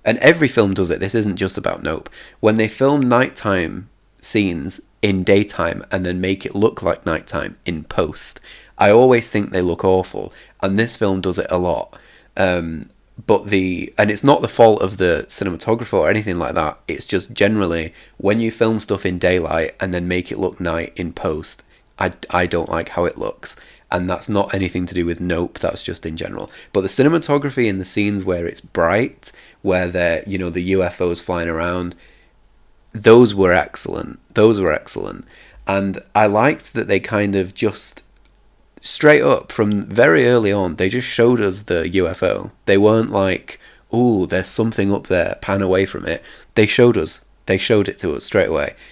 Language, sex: English, male